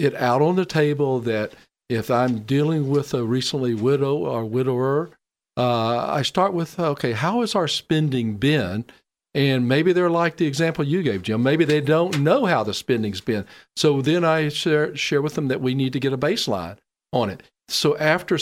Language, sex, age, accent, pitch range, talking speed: English, male, 50-69, American, 120-160 Hz, 195 wpm